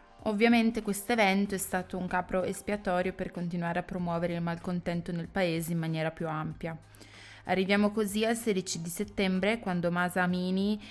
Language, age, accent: Italian, 20-39, native